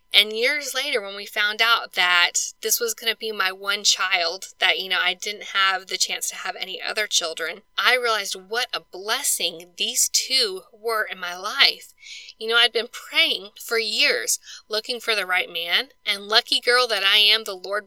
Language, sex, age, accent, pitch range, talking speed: English, female, 10-29, American, 190-250 Hz, 200 wpm